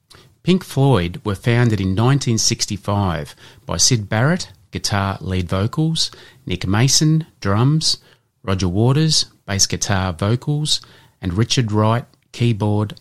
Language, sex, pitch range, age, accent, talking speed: English, male, 100-130 Hz, 30-49, Australian, 110 wpm